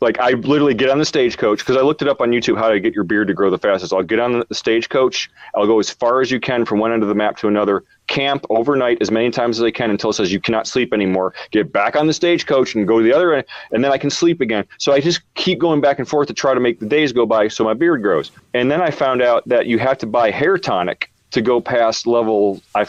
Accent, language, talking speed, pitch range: American, English, 295 wpm, 115-155 Hz